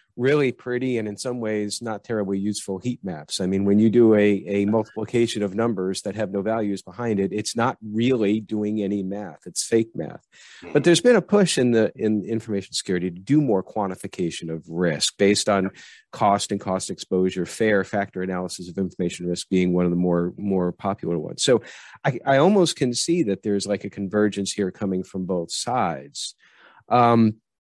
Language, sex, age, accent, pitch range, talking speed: English, male, 40-59, American, 90-110 Hz, 190 wpm